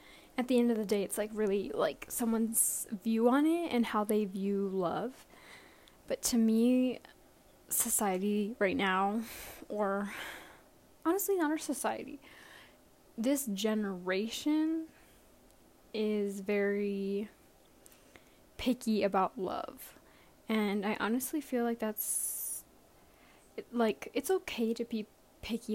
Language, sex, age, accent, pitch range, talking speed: English, female, 10-29, American, 210-255 Hz, 115 wpm